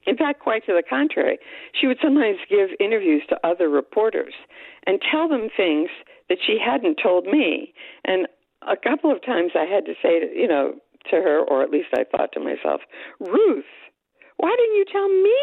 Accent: American